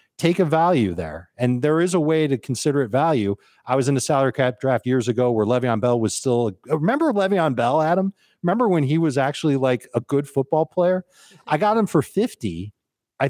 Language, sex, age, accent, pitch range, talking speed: English, male, 40-59, American, 115-150 Hz, 210 wpm